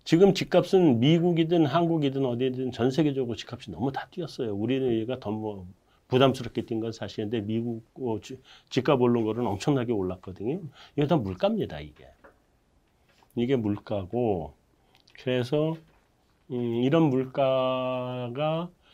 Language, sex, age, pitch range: Korean, male, 40-59, 115-150 Hz